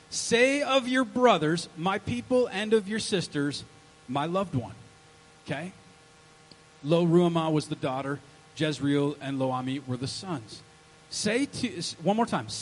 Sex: male